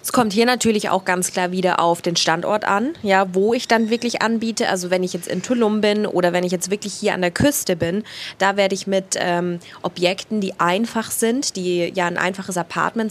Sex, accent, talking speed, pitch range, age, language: female, German, 225 wpm, 170-200 Hz, 20-39, German